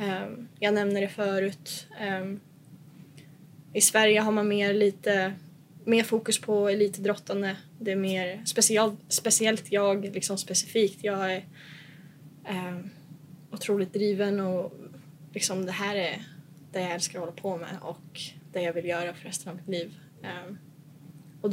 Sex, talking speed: female, 135 wpm